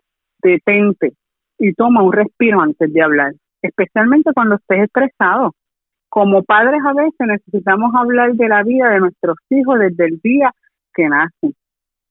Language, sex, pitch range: Spanish, female, 170-240 Hz